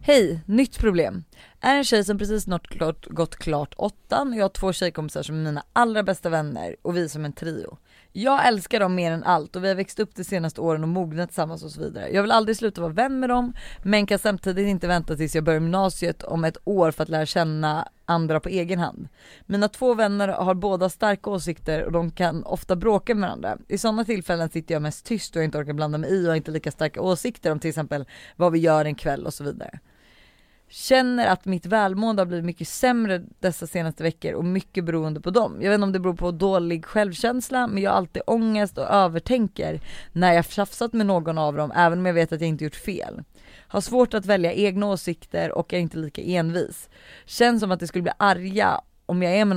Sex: female